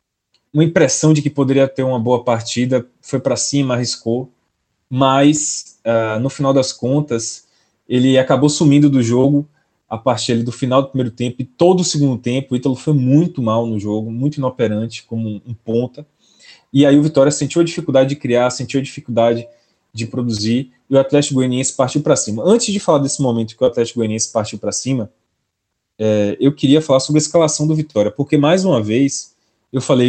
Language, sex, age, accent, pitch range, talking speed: Portuguese, male, 20-39, Brazilian, 115-140 Hz, 190 wpm